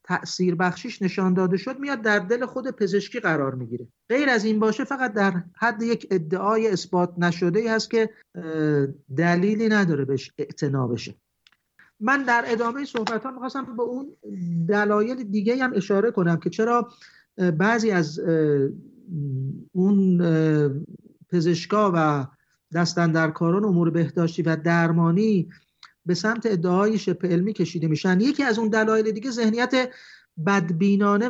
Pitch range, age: 175-220 Hz, 50-69